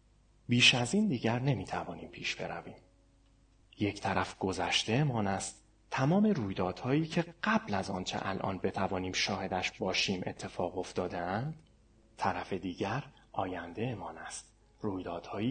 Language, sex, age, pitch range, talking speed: Persian, male, 30-49, 95-125 Hz, 110 wpm